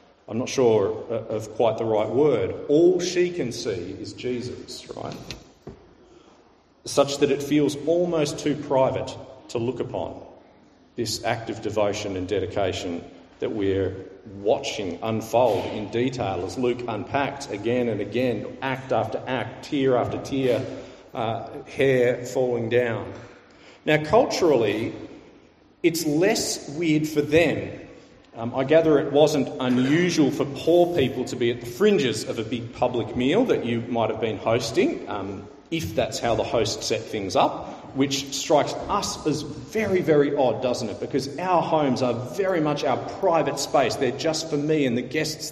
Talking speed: 155 wpm